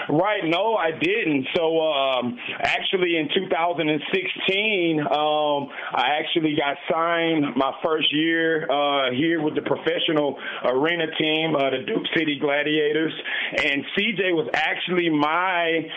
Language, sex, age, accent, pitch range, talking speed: English, male, 30-49, American, 145-170 Hz, 130 wpm